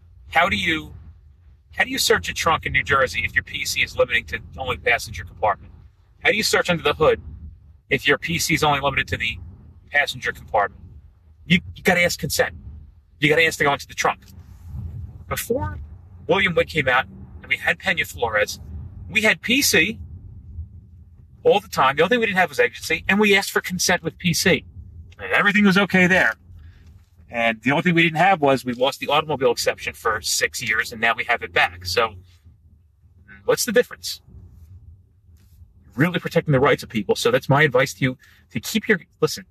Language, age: English, 30-49